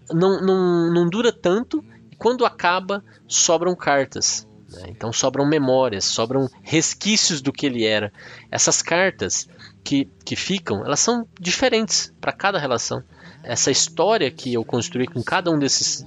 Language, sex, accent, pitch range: Portuguese, male, Brazilian, 110-155 Hz